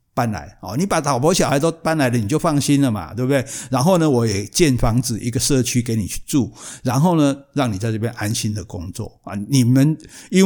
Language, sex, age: Chinese, male, 60-79